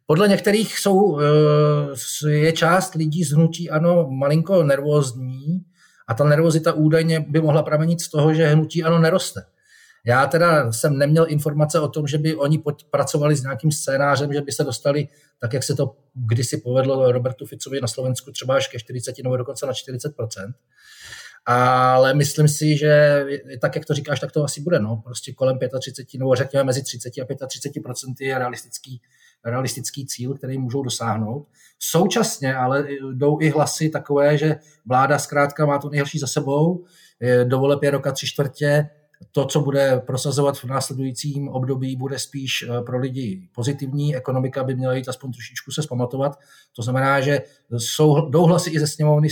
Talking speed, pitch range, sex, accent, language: 165 wpm, 130-150 Hz, male, native, Czech